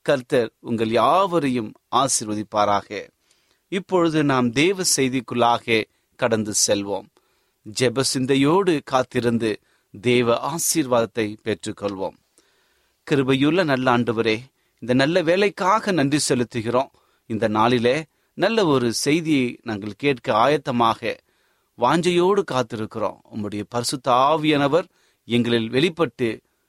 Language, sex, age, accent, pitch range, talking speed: Tamil, male, 30-49, native, 115-160 Hz, 90 wpm